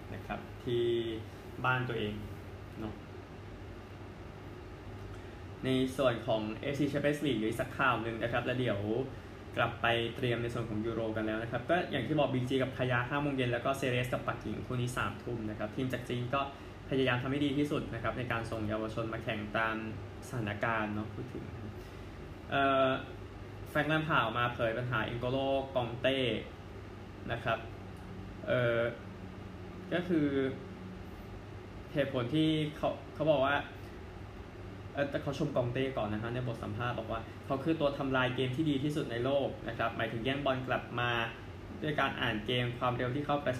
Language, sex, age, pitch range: Thai, male, 20-39, 100-130 Hz